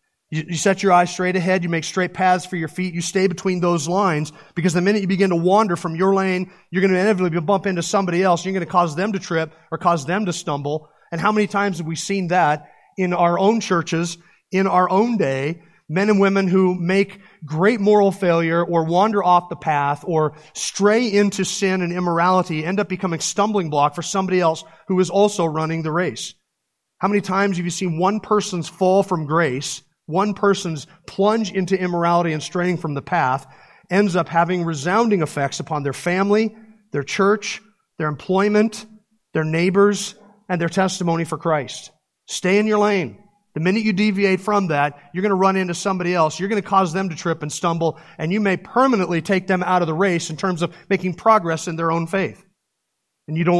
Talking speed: 205 wpm